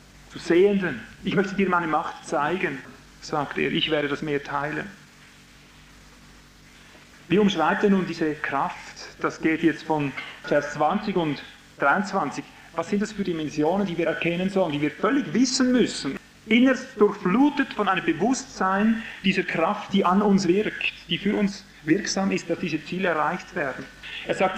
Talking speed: 160 wpm